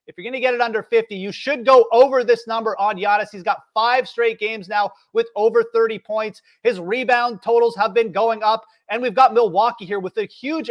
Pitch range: 195-250 Hz